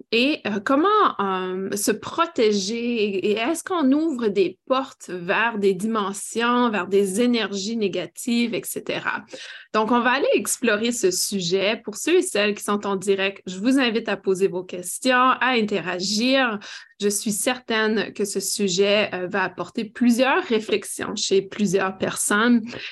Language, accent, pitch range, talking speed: French, Canadian, 195-245 Hz, 145 wpm